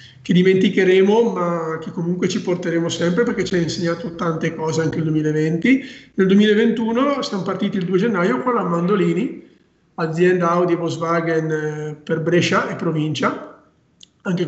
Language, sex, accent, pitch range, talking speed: Italian, male, native, 165-200 Hz, 145 wpm